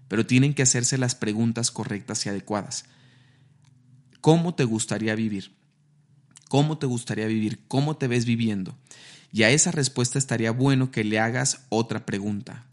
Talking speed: 150 wpm